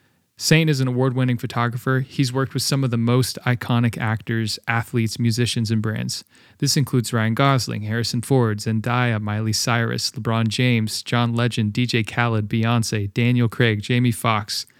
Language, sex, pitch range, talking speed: English, male, 115-125 Hz, 155 wpm